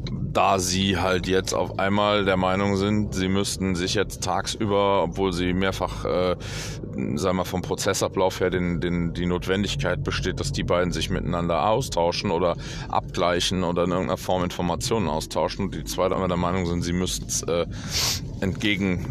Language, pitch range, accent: German, 90-110 Hz, German